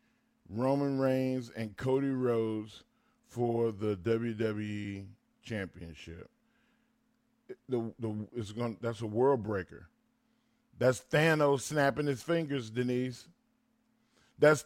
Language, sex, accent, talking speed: English, male, American, 100 wpm